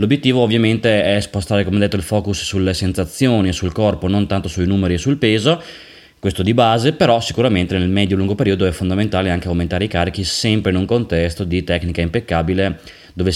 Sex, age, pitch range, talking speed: male, 20-39, 90-115 Hz, 200 wpm